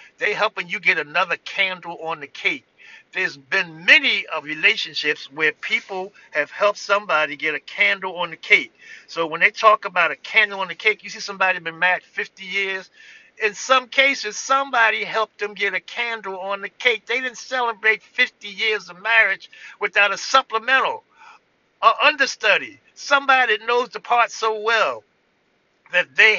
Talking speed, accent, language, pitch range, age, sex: 170 wpm, American, English, 200-290 Hz, 50-69, male